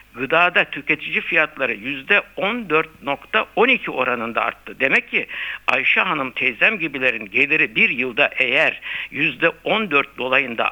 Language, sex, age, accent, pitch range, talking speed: Turkish, male, 60-79, native, 145-200 Hz, 100 wpm